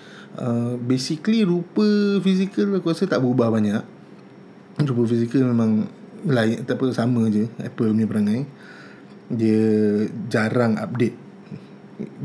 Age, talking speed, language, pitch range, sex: 20-39, 105 wpm, Malay, 115-140 Hz, male